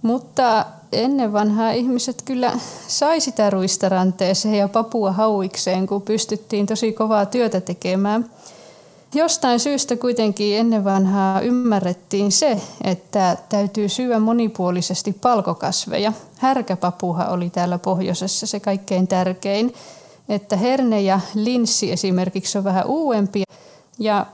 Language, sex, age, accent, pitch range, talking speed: Finnish, female, 20-39, native, 190-230 Hz, 110 wpm